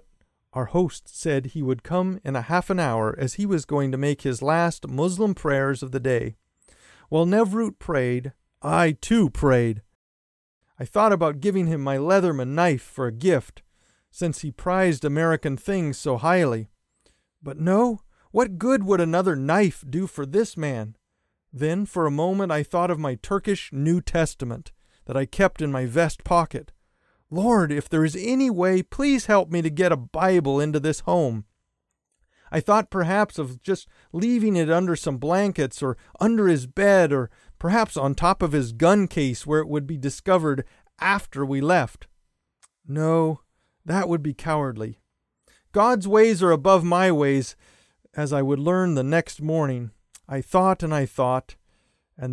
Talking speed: 170 wpm